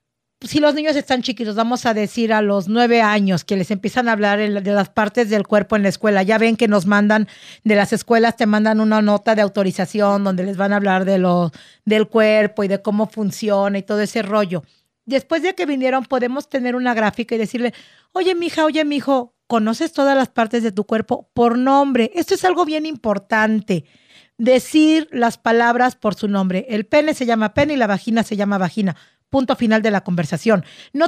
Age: 50-69